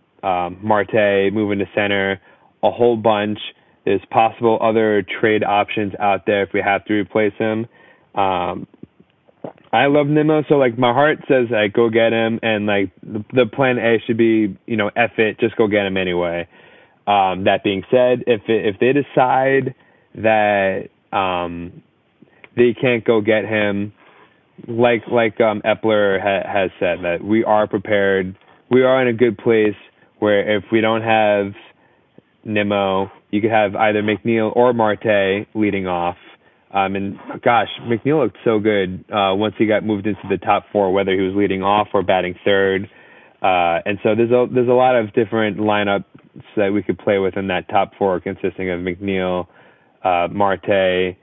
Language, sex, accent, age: English, male, American, 20-39